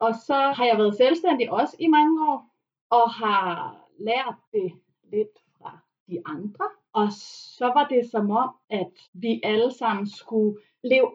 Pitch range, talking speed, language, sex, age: 210-295 Hz, 160 wpm, Danish, female, 30-49